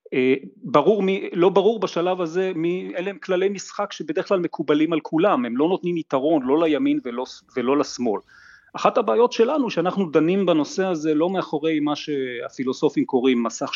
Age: 30-49